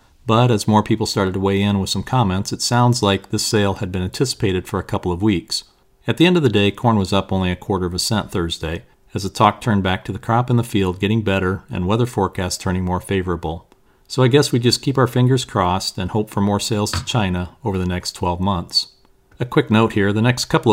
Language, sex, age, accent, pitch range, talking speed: English, male, 40-59, American, 95-115 Hz, 250 wpm